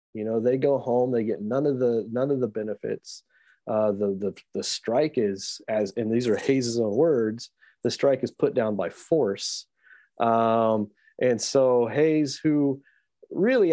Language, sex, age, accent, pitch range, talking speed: English, male, 30-49, American, 110-135 Hz, 175 wpm